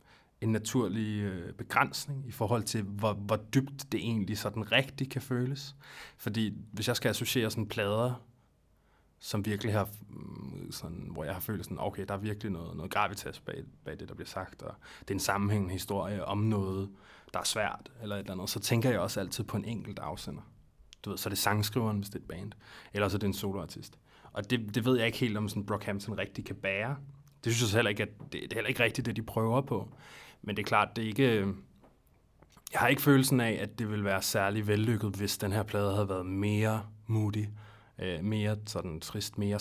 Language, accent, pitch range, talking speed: Danish, native, 100-120 Hz, 220 wpm